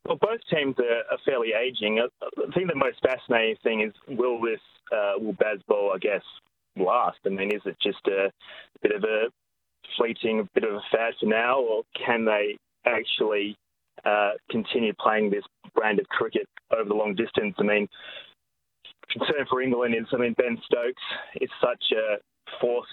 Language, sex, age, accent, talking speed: English, male, 20-39, Australian, 175 wpm